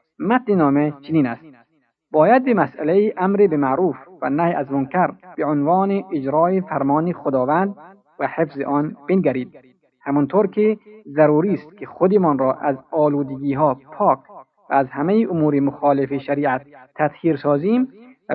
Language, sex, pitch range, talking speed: Persian, male, 140-180 Hz, 135 wpm